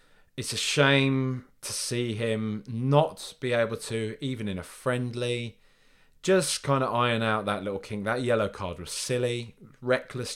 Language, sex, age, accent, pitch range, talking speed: English, male, 20-39, British, 90-130 Hz, 160 wpm